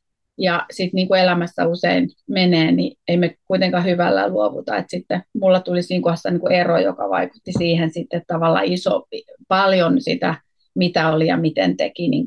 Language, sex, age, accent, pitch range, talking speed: Finnish, female, 30-49, native, 165-190 Hz, 160 wpm